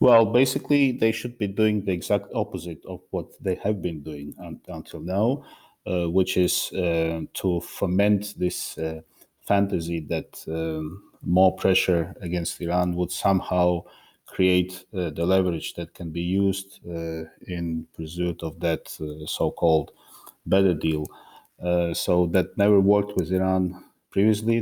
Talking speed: 145 wpm